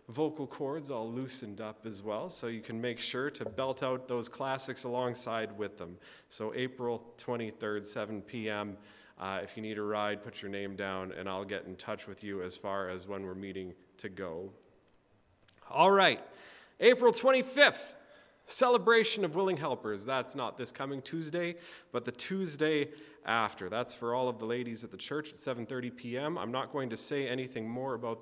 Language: English